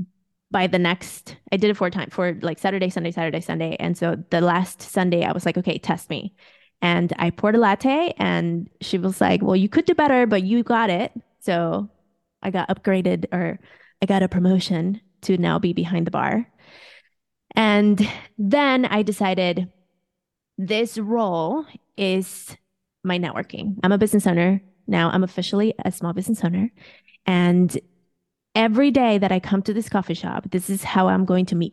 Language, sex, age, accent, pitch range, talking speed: English, female, 20-39, American, 180-210 Hz, 180 wpm